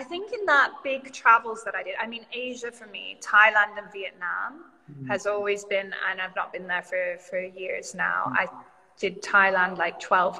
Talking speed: 195 wpm